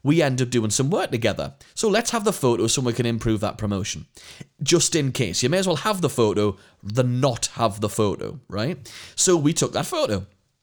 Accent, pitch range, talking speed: British, 125-185 Hz, 220 wpm